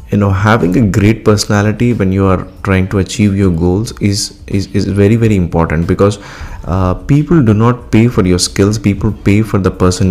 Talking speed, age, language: 200 wpm, 20-39, English